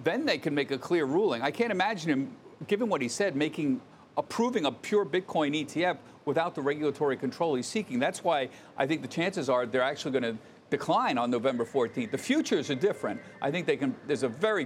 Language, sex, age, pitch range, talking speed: English, male, 50-69, 135-180 Hz, 215 wpm